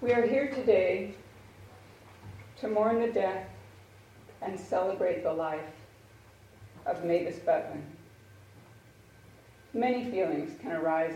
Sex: female